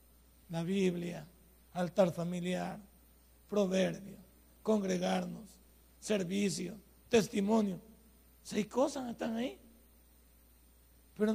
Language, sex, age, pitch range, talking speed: Spanish, male, 60-79, 175-235 Hz, 70 wpm